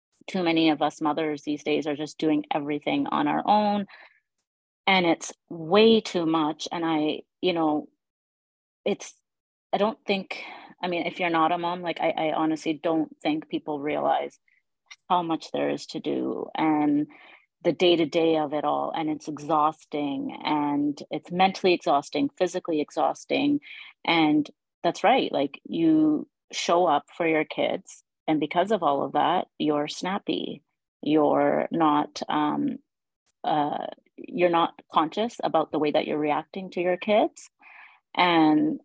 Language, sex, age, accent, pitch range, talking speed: English, female, 30-49, American, 150-190 Hz, 150 wpm